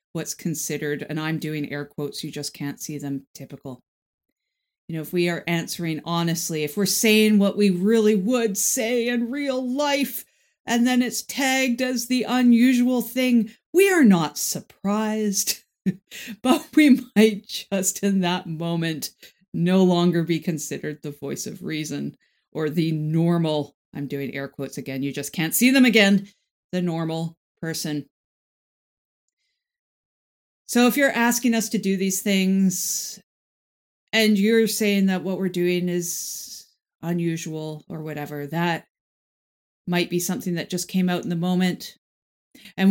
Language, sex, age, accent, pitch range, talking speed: English, female, 50-69, American, 155-215 Hz, 150 wpm